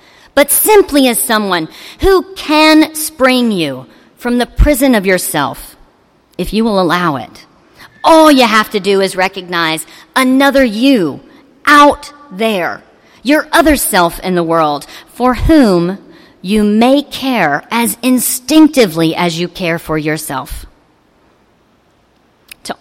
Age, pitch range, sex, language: 40-59, 190-300 Hz, female, English